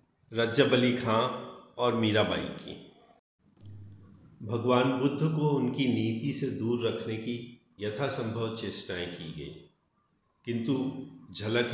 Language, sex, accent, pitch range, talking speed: Hindi, male, native, 105-135 Hz, 105 wpm